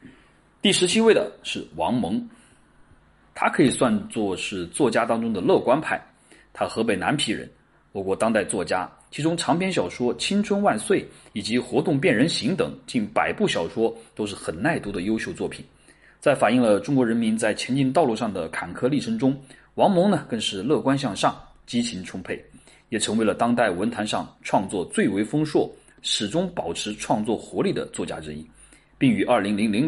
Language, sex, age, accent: Chinese, male, 30-49, native